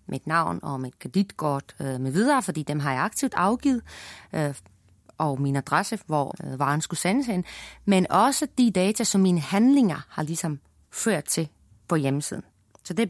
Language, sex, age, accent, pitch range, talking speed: Danish, female, 30-49, native, 145-205 Hz, 185 wpm